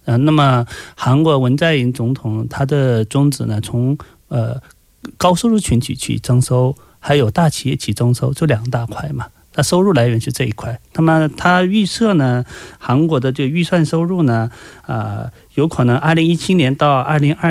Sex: male